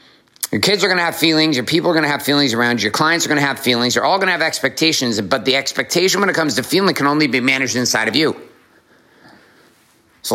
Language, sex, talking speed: English, male, 265 wpm